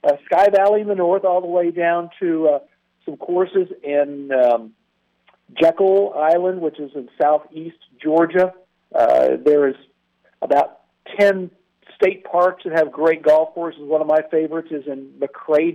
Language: English